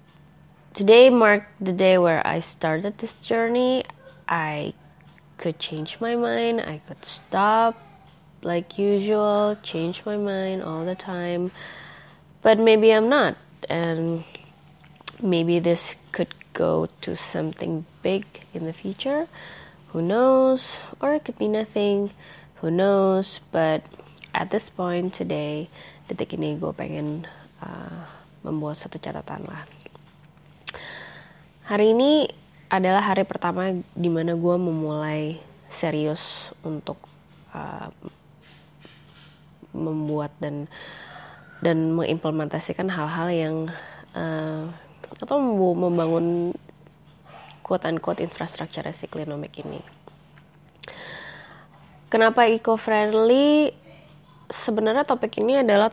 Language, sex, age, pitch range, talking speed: Indonesian, female, 20-39, 160-210 Hz, 105 wpm